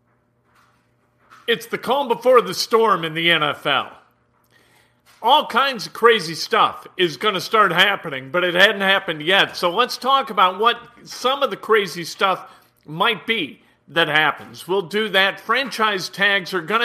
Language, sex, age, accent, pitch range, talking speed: English, male, 50-69, American, 170-230 Hz, 160 wpm